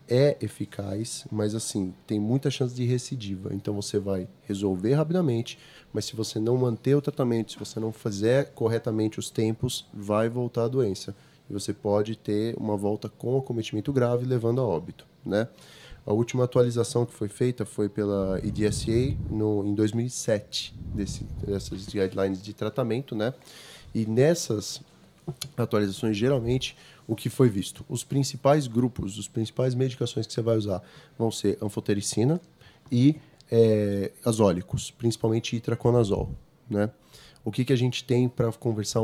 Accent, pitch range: Brazilian, 105-130 Hz